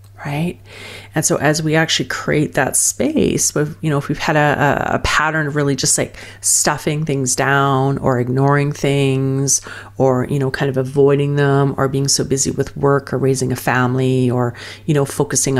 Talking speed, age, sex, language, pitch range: 185 wpm, 40-59, female, English, 130-160 Hz